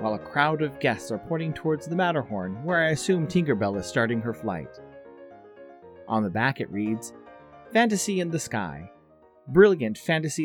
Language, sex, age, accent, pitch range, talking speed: English, male, 30-49, American, 110-155 Hz, 165 wpm